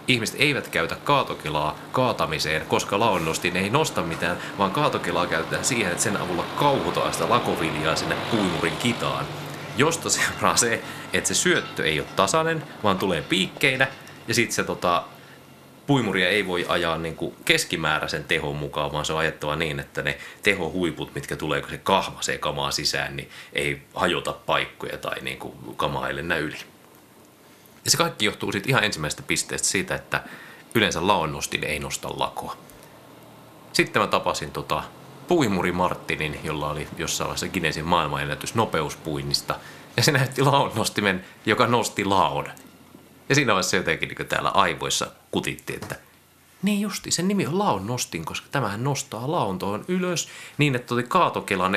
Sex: male